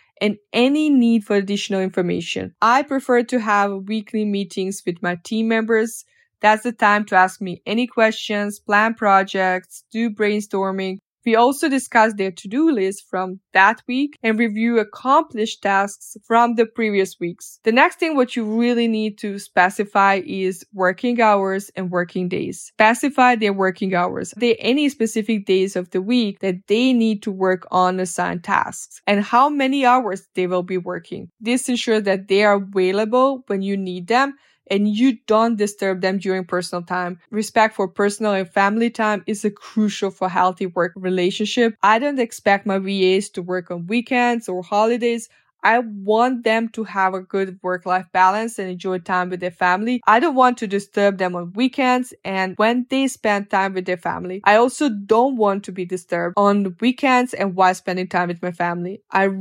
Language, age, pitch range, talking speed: English, 20-39, 190-230 Hz, 180 wpm